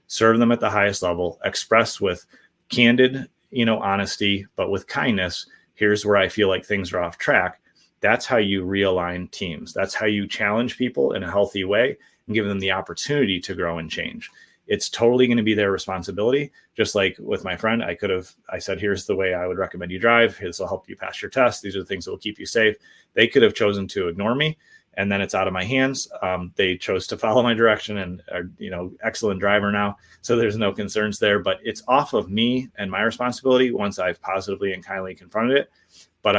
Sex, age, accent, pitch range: male, 30-49, American, 95-115 Hz